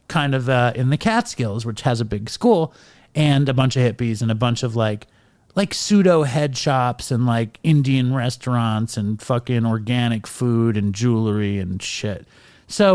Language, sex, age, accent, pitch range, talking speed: English, male, 30-49, American, 125-175 Hz, 175 wpm